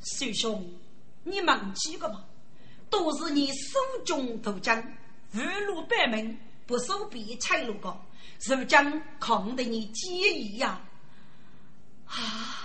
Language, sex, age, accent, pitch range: Chinese, female, 40-59, native, 215-305 Hz